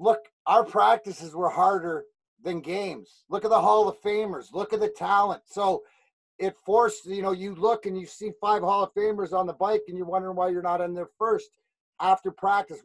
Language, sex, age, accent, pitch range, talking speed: English, male, 30-49, American, 175-210 Hz, 210 wpm